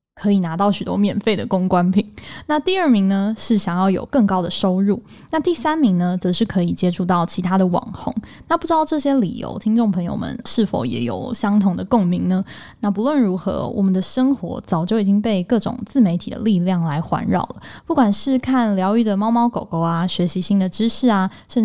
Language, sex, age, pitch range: Chinese, female, 10-29, 185-235 Hz